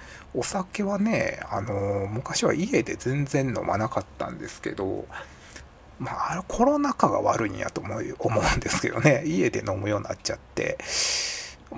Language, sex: Japanese, male